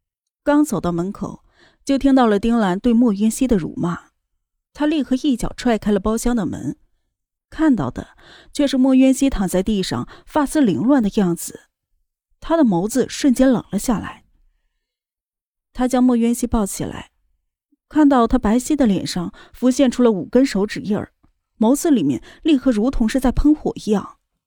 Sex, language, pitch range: female, Chinese, 200-265 Hz